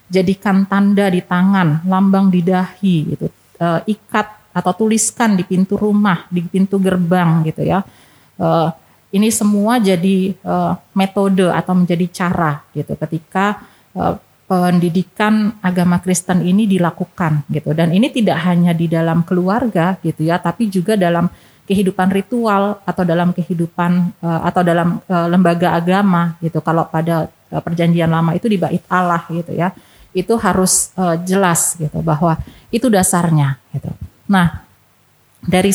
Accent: native